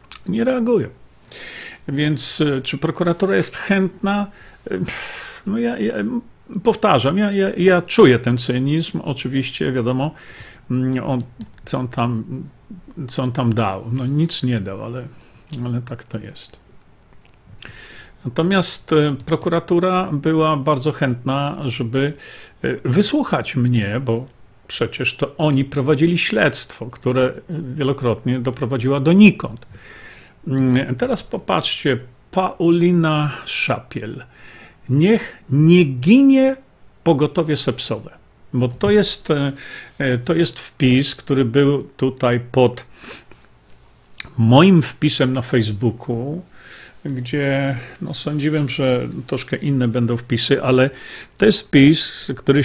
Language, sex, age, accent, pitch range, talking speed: Polish, male, 50-69, native, 125-165 Hz, 100 wpm